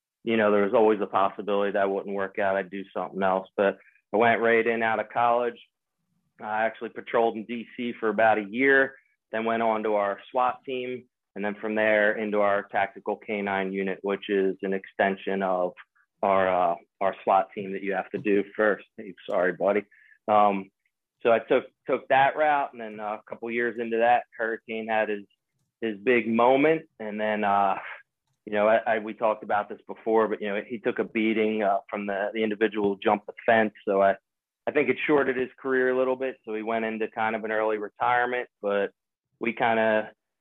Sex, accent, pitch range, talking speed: male, American, 105-120 Hz, 205 wpm